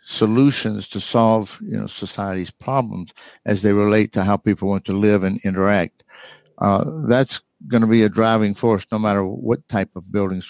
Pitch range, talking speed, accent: 110-135 Hz, 185 wpm, American